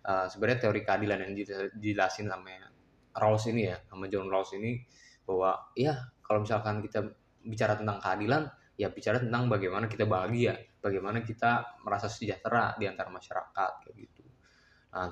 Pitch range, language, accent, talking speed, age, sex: 105-125 Hz, Indonesian, native, 145 wpm, 20-39, male